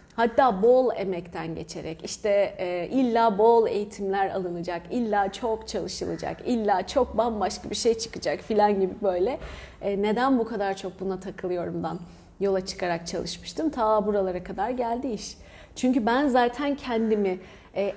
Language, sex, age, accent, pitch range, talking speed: Turkish, female, 30-49, native, 195-260 Hz, 140 wpm